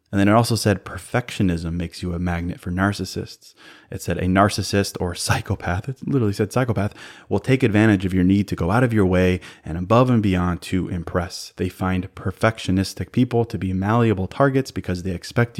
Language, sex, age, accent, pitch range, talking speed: English, male, 20-39, American, 95-110 Hz, 195 wpm